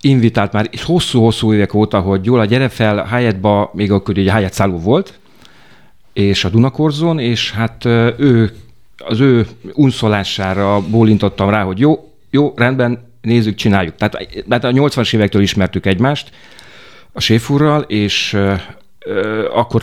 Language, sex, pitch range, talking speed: Hungarian, male, 95-120 Hz, 135 wpm